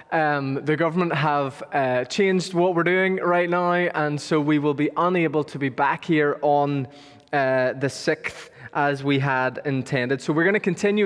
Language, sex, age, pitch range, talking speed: English, male, 20-39, 145-180 Hz, 185 wpm